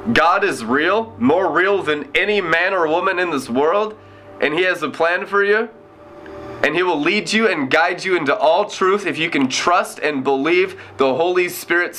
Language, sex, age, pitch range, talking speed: English, male, 30-49, 150-210 Hz, 200 wpm